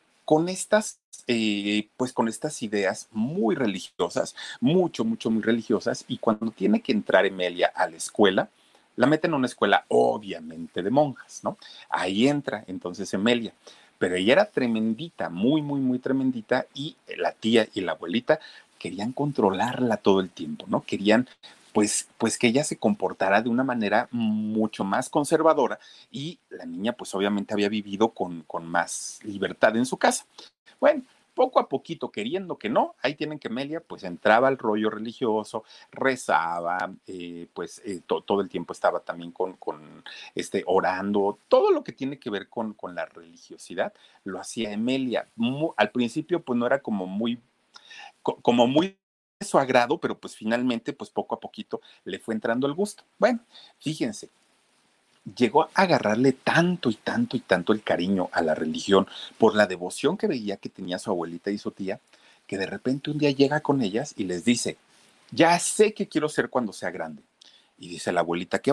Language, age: Spanish, 40-59